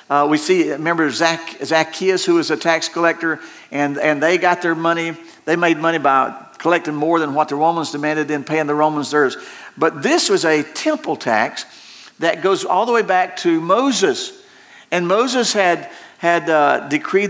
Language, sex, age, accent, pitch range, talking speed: English, male, 50-69, American, 155-205 Hz, 185 wpm